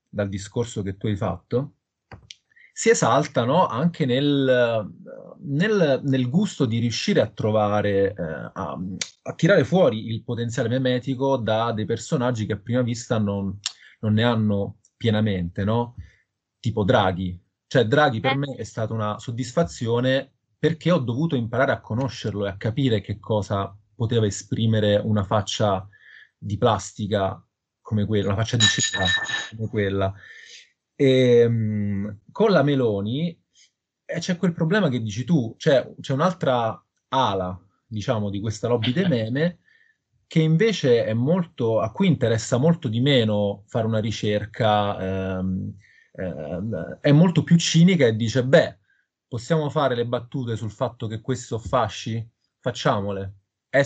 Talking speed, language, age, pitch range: 140 wpm, Italian, 30-49, 105-135 Hz